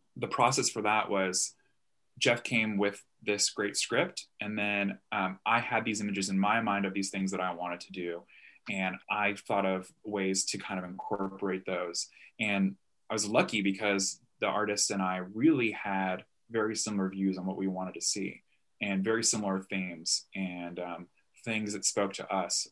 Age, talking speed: 20-39, 185 wpm